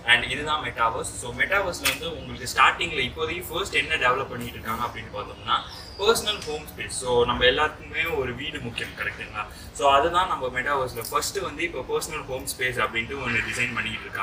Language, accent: Tamil, native